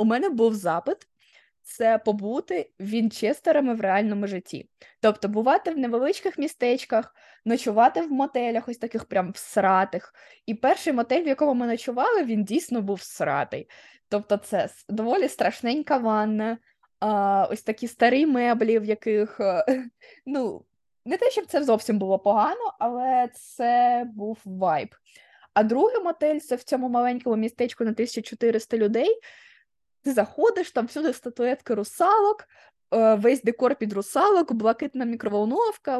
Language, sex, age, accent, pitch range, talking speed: Ukrainian, female, 20-39, native, 210-270 Hz, 135 wpm